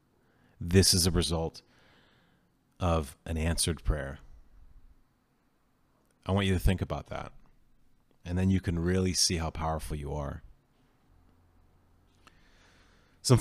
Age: 30-49